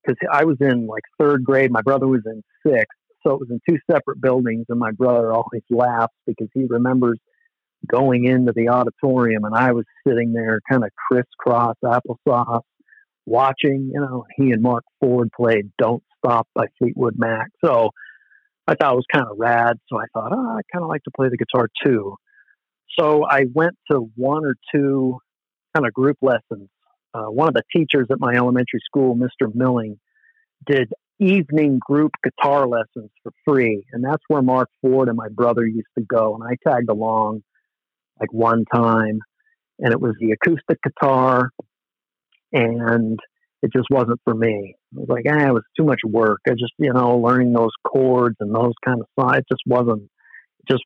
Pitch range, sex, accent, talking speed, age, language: 115-135 Hz, male, American, 190 wpm, 50-69, English